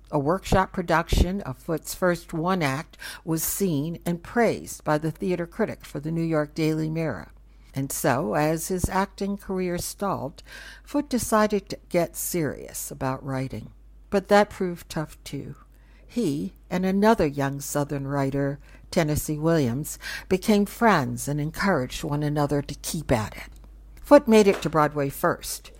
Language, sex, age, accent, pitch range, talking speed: English, female, 60-79, American, 130-185 Hz, 150 wpm